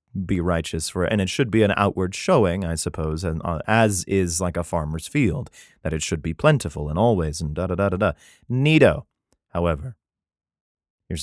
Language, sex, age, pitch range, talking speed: English, male, 30-49, 85-130 Hz, 170 wpm